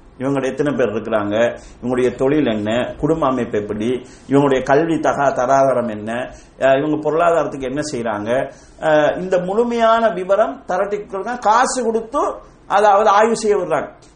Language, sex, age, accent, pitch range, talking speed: English, male, 50-69, Indian, 150-225 Hz, 150 wpm